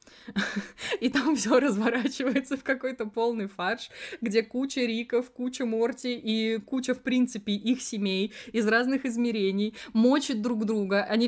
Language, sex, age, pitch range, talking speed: Russian, female, 20-39, 200-240 Hz, 140 wpm